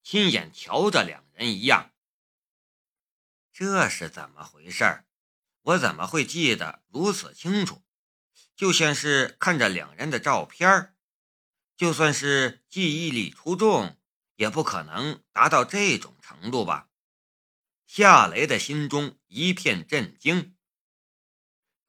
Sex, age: male, 50-69